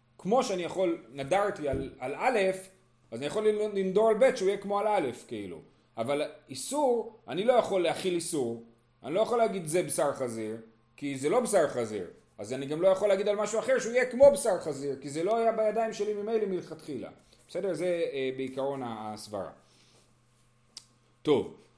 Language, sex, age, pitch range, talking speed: Hebrew, male, 30-49, 130-205 Hz, 180 wpm